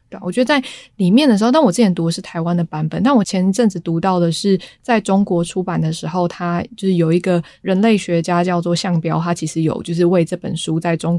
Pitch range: 165-190 Hz